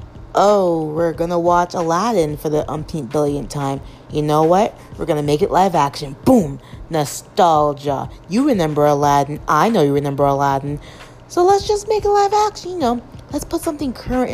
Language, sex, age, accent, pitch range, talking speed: English, female, 30-49, American, 150-230 Hz, 185 wpm